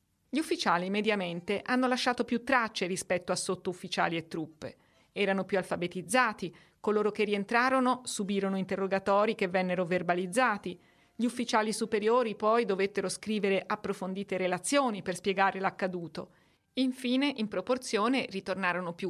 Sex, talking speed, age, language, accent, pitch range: female, 125 wpm, 40-59, Italian, native, 185-240 Hz